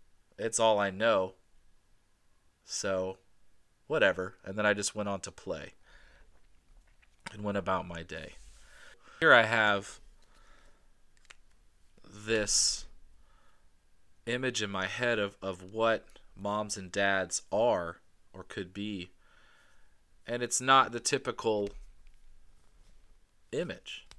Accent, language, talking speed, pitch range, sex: American, English, 105 wpm, 90-110 Hz, male